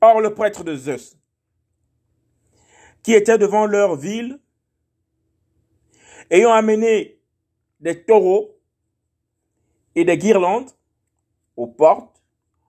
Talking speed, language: 90 wpm, French